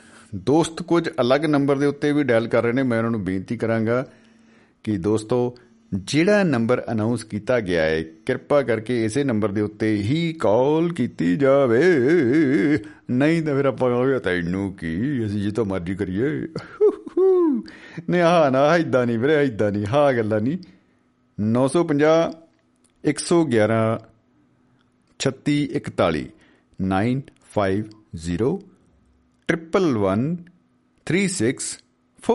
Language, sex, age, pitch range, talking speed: Punjabi, male, 50-69, 105-165 Hz, 115 wpm